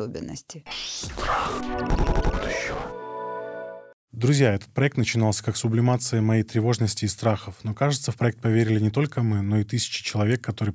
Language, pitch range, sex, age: Russian, 110-125 Hz, male, 20-39